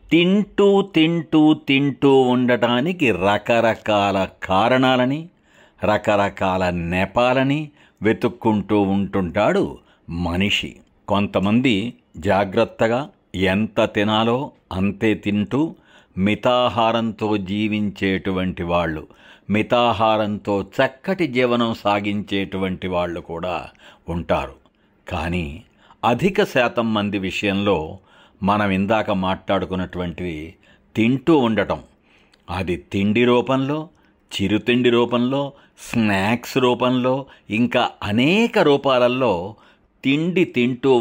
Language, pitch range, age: Telugu, 95-125 Hz, 60-79